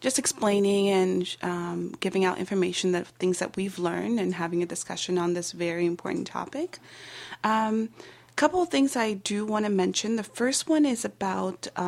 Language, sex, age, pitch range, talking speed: English, female, 20-39, 180-205 Hz, 185 wpm